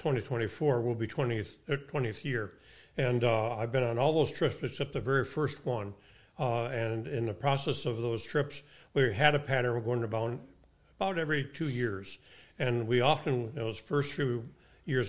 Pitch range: 115-140 Hz